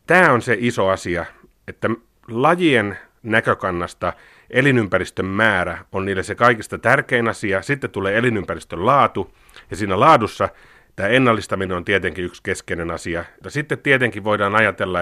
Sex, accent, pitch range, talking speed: male, native, 90-120 Hz, 140 wpm